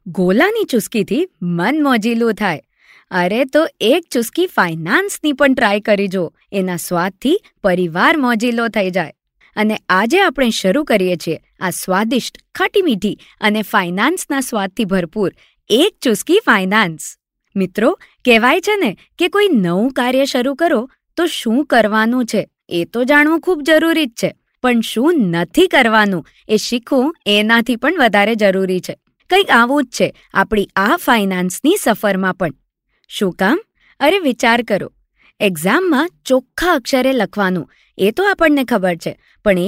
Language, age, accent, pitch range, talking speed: Gujarati, 20-39, native, 195-295 Hz, 105 wpm